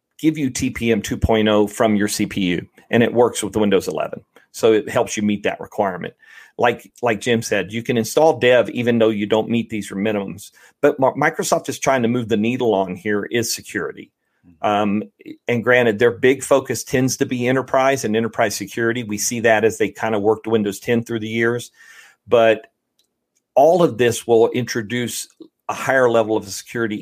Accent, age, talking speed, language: American, 40-59, 190 wpm, English